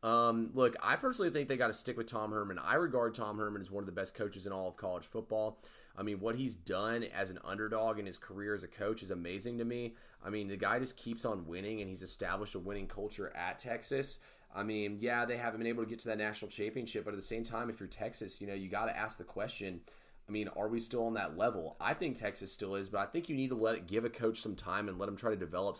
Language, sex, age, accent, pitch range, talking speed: English, male, 30-49, American, 100-115 Hz, 285 wpm